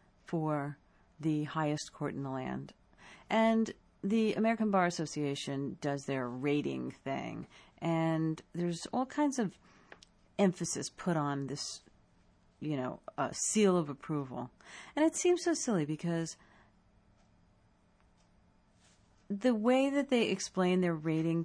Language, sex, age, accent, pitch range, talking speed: English, female, 50-69, American, 135-180 Hz, 125 wpm